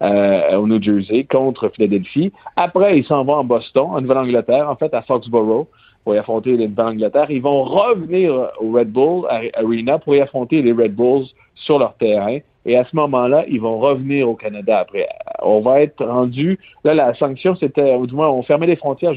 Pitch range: 115-145 Hz